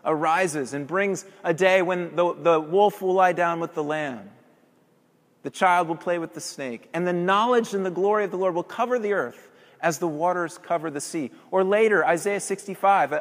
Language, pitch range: English, 160-200 Hz